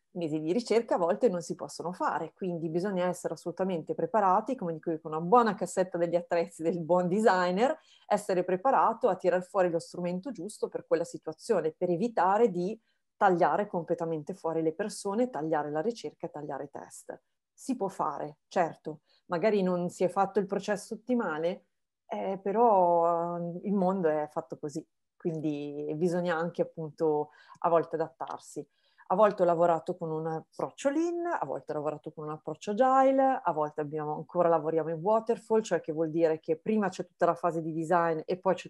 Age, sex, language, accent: 30-49, female, Italian, native